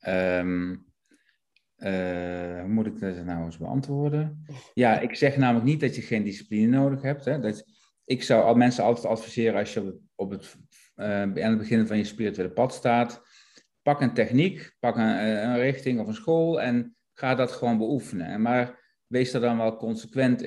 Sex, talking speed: male, 180 wpm